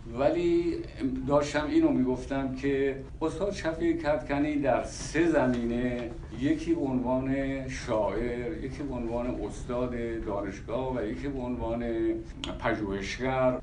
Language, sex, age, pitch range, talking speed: Persian, male, 60-79, 115-135 Hz, 95 wpm